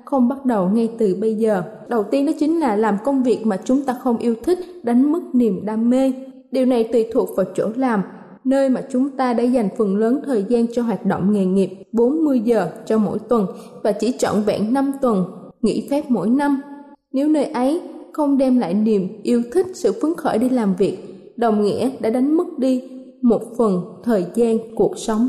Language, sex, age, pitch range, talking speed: Vietnamese, female, 20-39, 220-275 Hz, 215 wpm